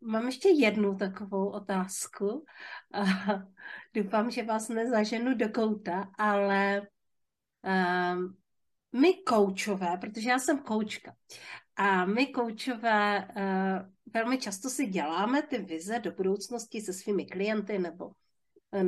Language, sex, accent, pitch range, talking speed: Czech, female, native, 195-240 Hz, 115 wpm